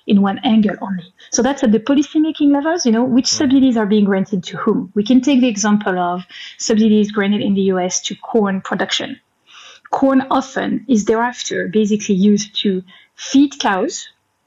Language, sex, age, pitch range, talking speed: English, female, 30-49, 200-245 Hz, 175 wpm